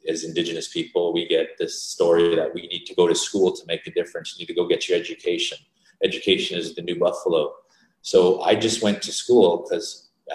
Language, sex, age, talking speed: English, male, 30-49, 215 wpm